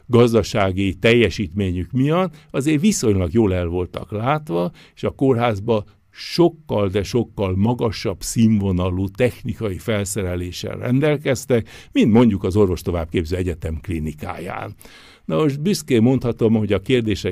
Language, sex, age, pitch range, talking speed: Hungarian, male, 60-79, 100-125 Hz, 120 wpm